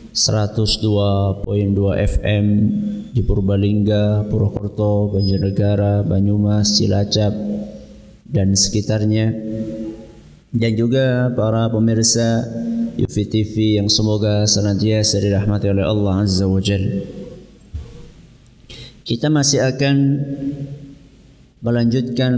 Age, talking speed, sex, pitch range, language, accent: 30-49, 75 wpm, male, 105-120 Hz, Indonesian, native